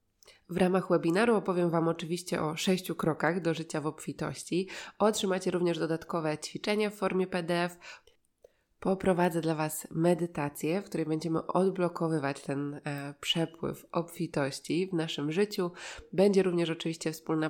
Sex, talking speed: female, 130 wpm